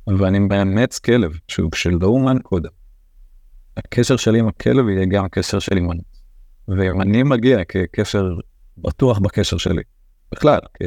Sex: male